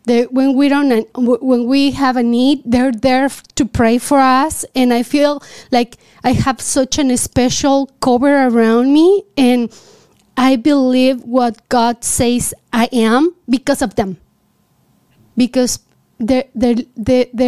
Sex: female